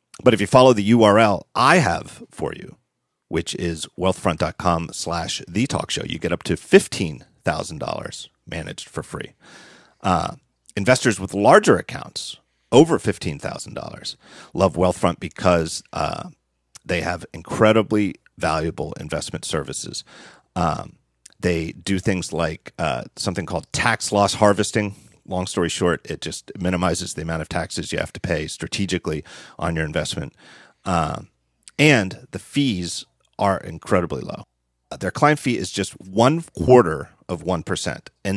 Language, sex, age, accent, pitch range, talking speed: English, male, 40-59, American, 85-105 Hz, 140 wpm